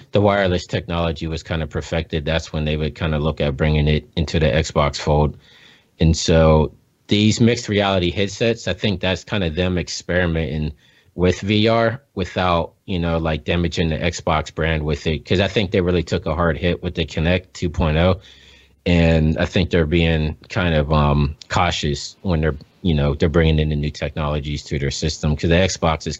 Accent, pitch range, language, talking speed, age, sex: American, 80-100 Hz, English, 195 wpm, 30-49, male